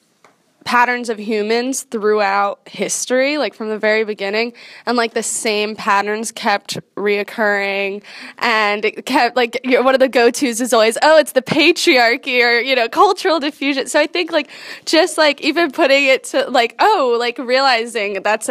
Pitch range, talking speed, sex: 200-250 Hz, 165 wpm, female